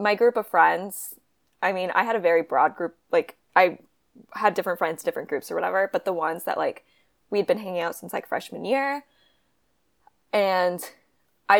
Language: English